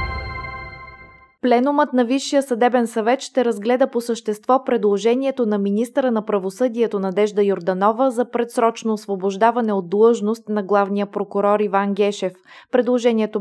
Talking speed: 120 wpm